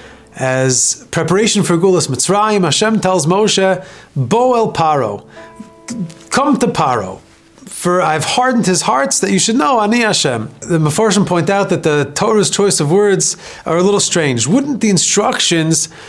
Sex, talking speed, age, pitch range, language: male, 160 wpm, 30-49, 150-210 Hz, English